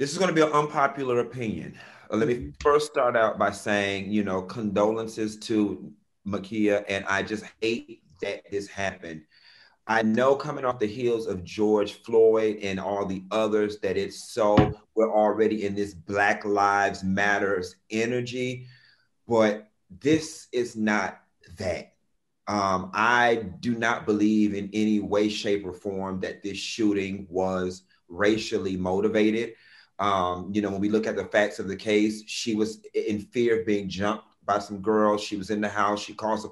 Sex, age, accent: male, 30-49, American